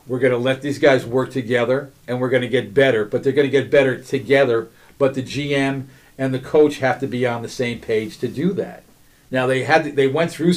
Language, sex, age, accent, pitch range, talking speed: English, male, 50-69, American, 125-155 Hz, 250 wpm